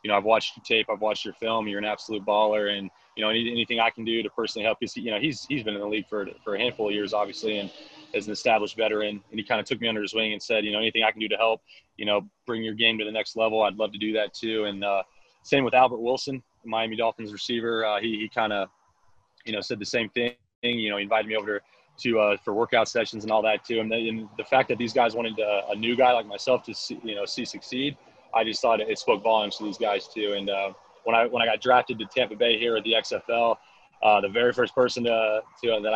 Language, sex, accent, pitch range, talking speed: English, male, American, 105-120 Hz, 285 wpm